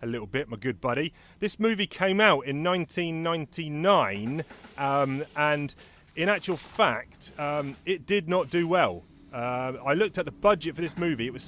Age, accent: 30-49, British